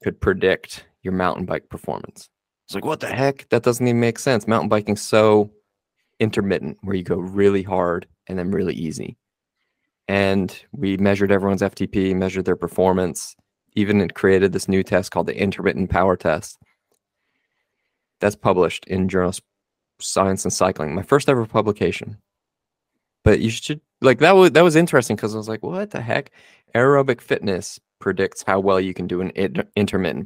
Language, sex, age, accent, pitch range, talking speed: English, male, 20-39, American, 90-105 Hz, 165 wpm